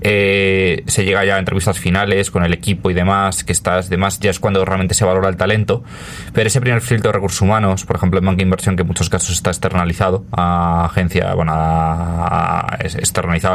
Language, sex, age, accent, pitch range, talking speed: English, male, 20-39, Spanish, 90-100 Hz, 210 wpm